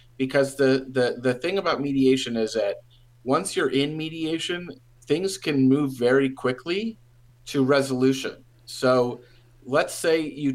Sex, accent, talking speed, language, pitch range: male, American, 135 wpm, English, 120-140 Hz